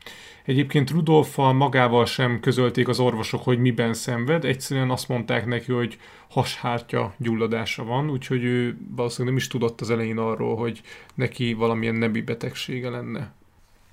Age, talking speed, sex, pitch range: 30-49, 140 wpm, male, 120-140 Hz